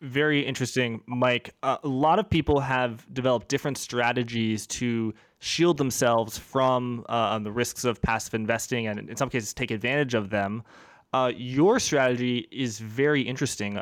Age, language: 20-39, English